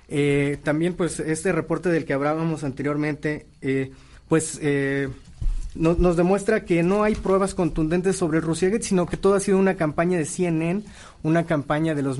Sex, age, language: male, 30-49, Spanish